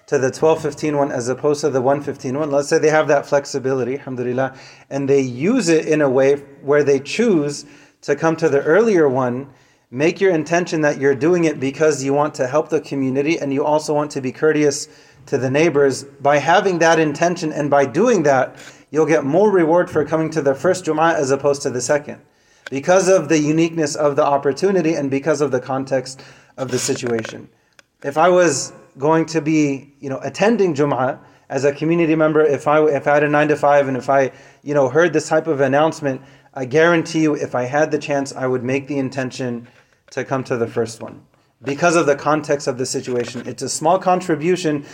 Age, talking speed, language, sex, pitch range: 30-49, 210 wpm, English, male, 135-155 Hz